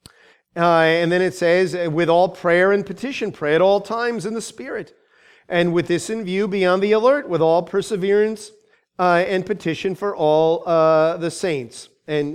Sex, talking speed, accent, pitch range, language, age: male, 185 wpm, American, 165-210 Hz, English, 40-59